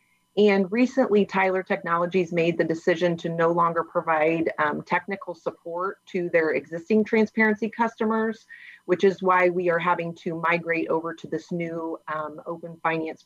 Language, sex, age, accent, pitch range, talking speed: English, female, 30-49, American, 165-200 Hz, 155 wpm